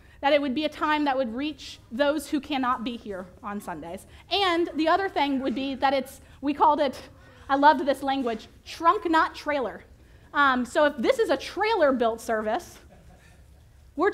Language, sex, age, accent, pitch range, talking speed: English, female, 30-49, American, 260-315 Hz, 185 wpm